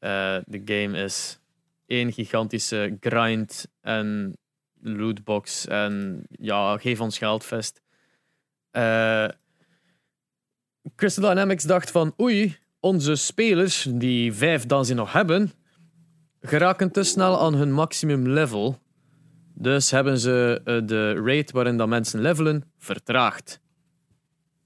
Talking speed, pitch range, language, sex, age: 110 wpm, 125-170 Hz, Dutch, male, 20-39